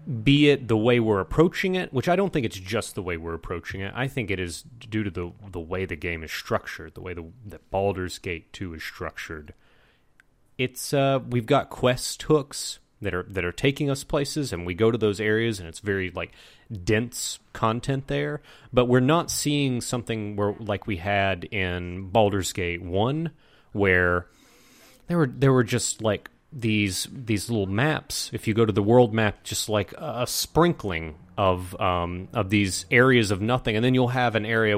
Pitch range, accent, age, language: 95-125 Hz, American, 30-49, English